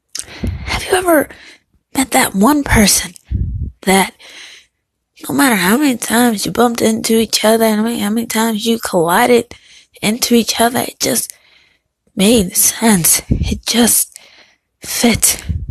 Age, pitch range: 20-39, 185-240 Hz